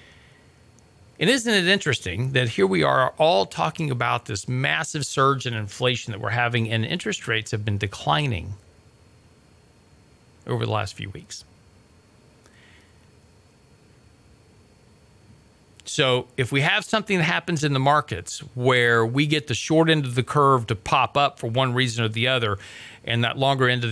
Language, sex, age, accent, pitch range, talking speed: English, male, 40-59, American, 110-135 Hz, 160 wpm